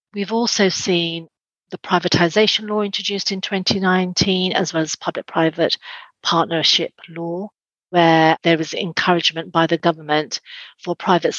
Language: English